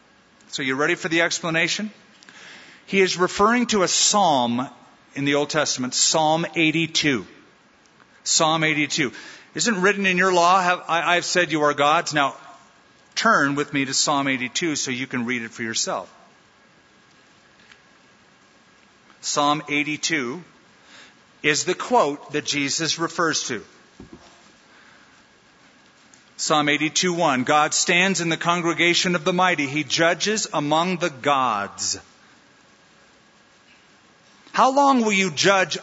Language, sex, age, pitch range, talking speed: English, male, 50-69, 145-180 Hz, 120 wpm